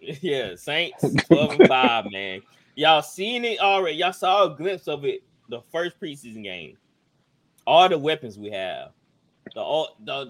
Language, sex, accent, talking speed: English, male, American, 155 wpm